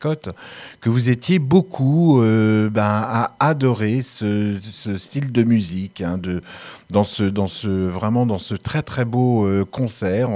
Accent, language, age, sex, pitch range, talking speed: French, French, 50-69, male, 95-130 Hz, 155 wpm